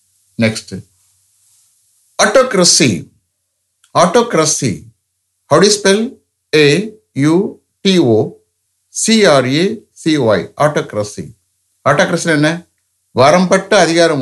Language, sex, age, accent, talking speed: English, male, 60-79, Indian, 65 wpm